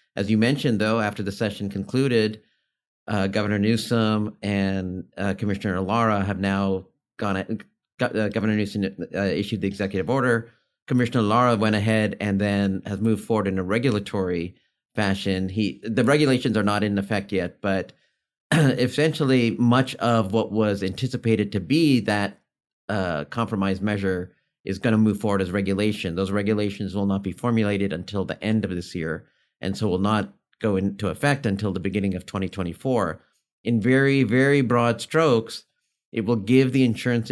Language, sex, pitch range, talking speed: English, male, 100-120 Hz, 160 wpm